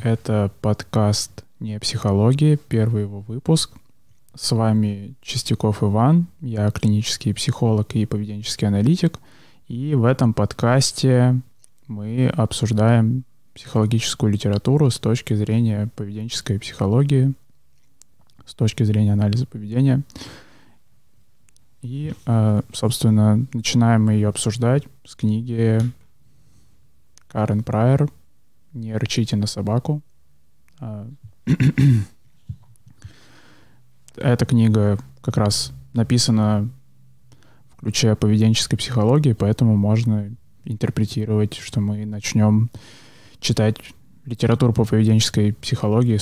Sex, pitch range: male, 105-125 Hz